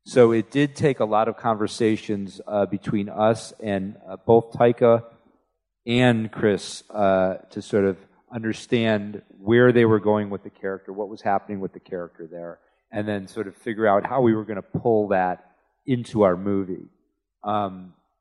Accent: American